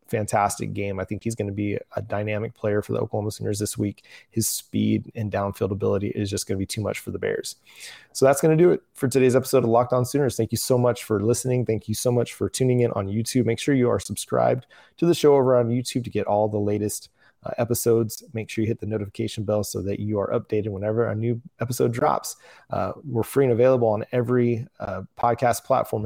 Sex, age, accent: male, 20-39, American